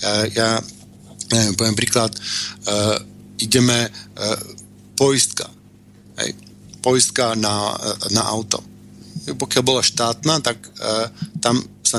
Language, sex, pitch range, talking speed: Slovak, male, 105-125 Hz, 110 wpm